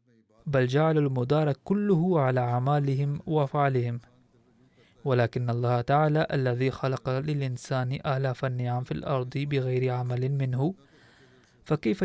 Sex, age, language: male, 20-39, Arabic